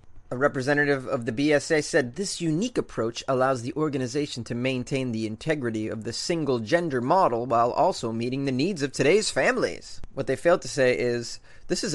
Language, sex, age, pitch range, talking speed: English, male, 30-49, 125-170 Hz, 185 wpm